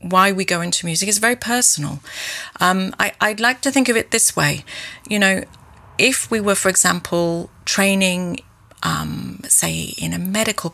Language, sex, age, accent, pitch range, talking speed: English, female, 30-49, British, 165-210 Hz, 170 wpm